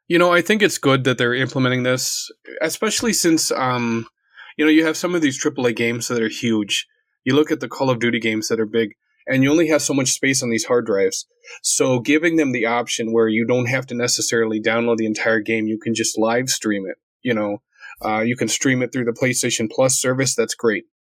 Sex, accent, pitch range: male, American, 120-150 Hz